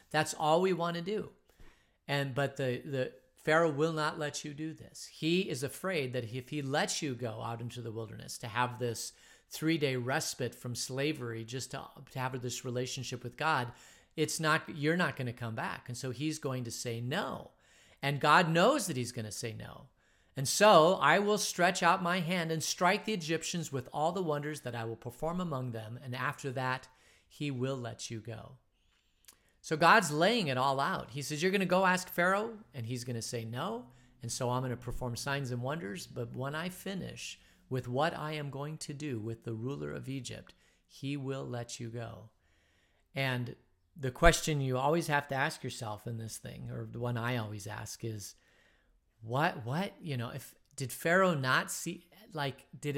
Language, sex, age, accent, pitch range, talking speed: English, male, 40-59, American, 120-160 Hz, 205 wpm